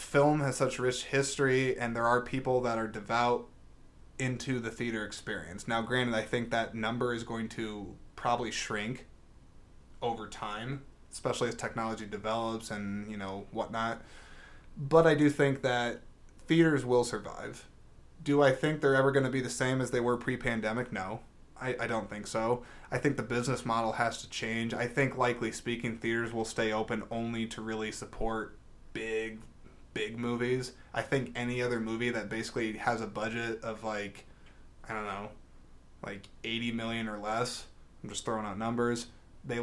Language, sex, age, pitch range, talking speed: English, male, 20-39, 110-125 Hz, 175 wpm